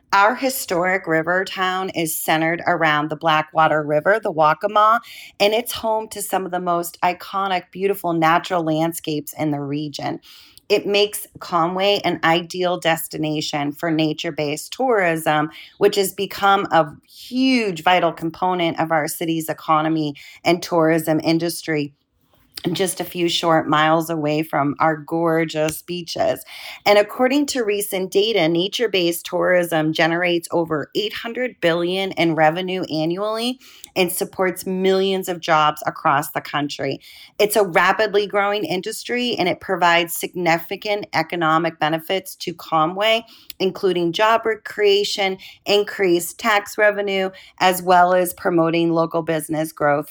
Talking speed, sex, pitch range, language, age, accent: 130 wpm, female, 160-195 Hz, English, 30-49, American